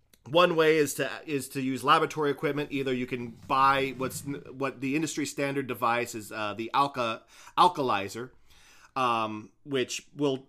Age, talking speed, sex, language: 30-49, 155 wpm, male, English